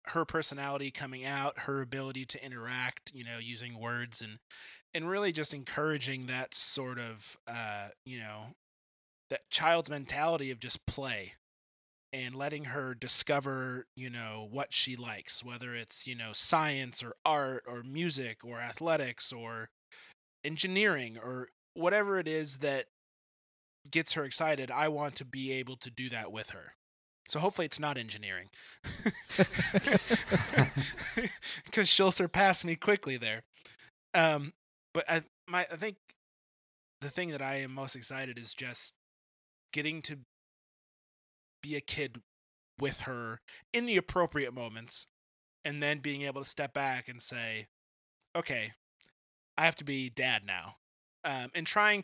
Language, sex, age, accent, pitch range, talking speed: English, male, 20-39, American, 120-150 Hz, 145 wpm